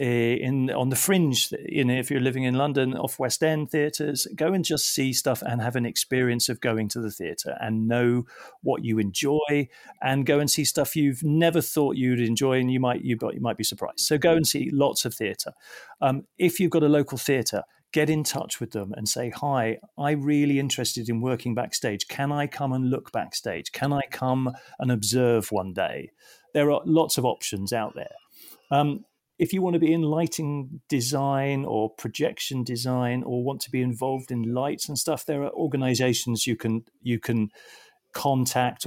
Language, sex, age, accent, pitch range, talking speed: English, male, 40-59, British, 120-145 Hz, 200 wpm